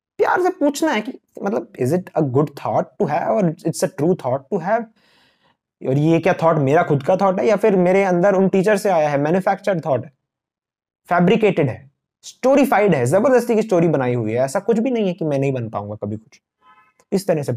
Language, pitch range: Hindi, 130-185 Hz